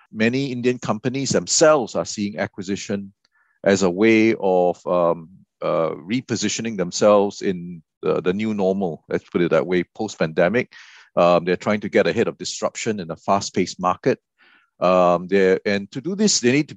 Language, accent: English, Malaysian